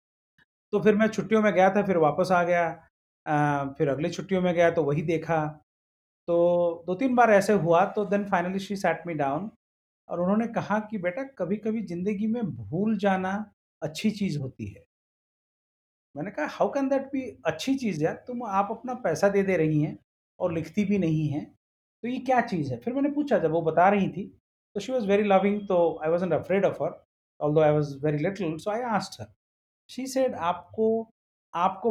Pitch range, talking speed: 155-215 Hz, 195 wpm